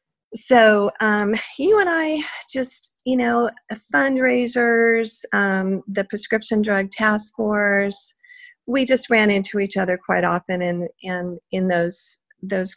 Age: 40-59